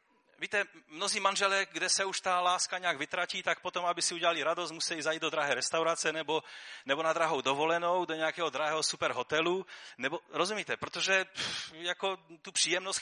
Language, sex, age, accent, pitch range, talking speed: Czech, male, 30-49, native, 140-190 Hz, 160 wpm